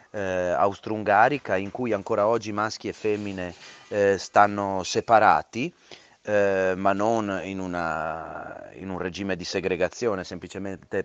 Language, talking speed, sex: Italian, 125 wpm, male